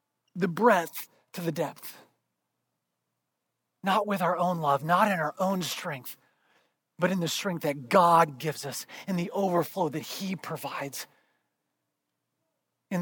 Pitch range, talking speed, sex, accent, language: 155-210 Hz, 140 wpm, male, American, English